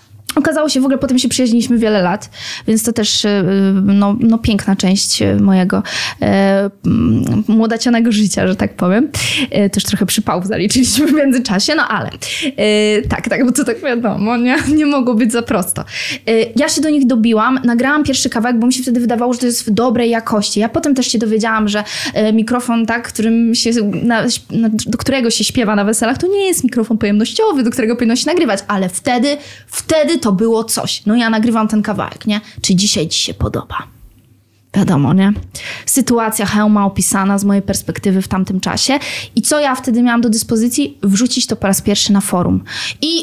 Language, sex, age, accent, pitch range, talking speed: Polish, female, 20-39, native, 205-250 Hz, 190 wpm